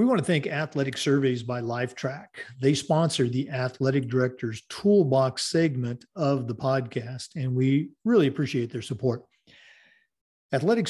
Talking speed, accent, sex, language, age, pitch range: 140 wpm, American, male, English, 50-69, 130-165 Hz